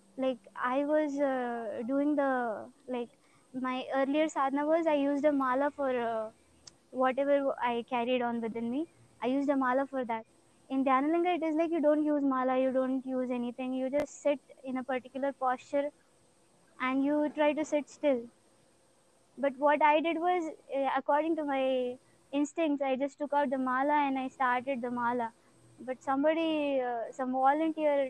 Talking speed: 175 wpm